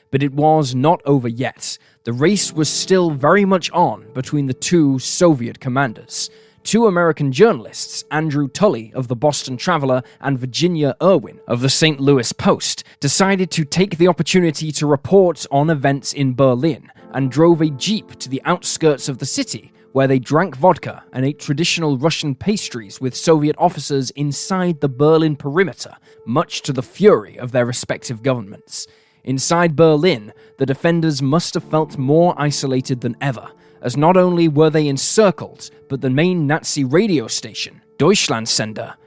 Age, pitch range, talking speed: 10-29, 130-170 Hz, 160 wpm